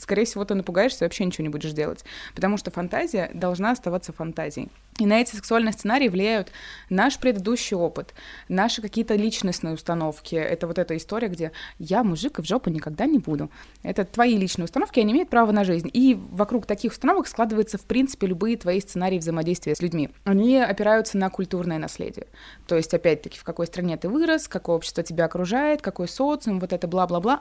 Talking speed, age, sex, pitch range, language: 190 wpm, 20-39, female, 170-230 Hz, Russian